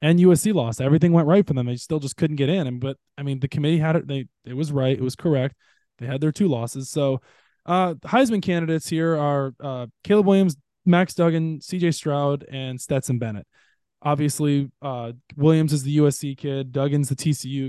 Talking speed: 205 wpm